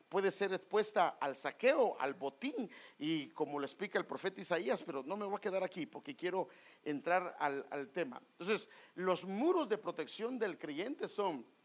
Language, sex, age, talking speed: English, male, 50-69, 180 wpm